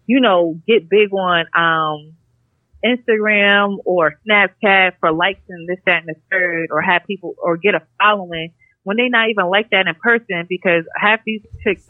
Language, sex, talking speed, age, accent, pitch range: English, female, 180 wpm, 20-39, American, 160-205 Hz